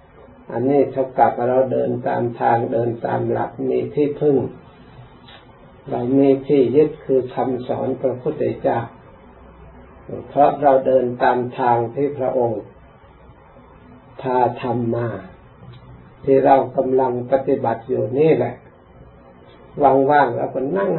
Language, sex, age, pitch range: Thai, male, 60-79, 120-140 Hz